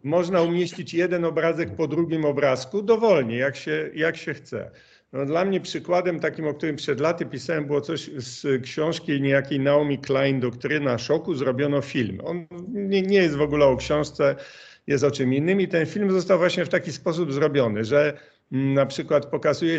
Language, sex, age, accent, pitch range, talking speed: Polish, male, 50-69, native, 125-155 Hz, 175 wpm